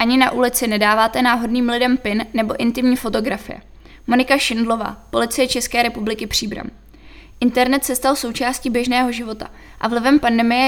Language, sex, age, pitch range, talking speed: Czech, female, 20-39, 230-255 Hz, 140 wpm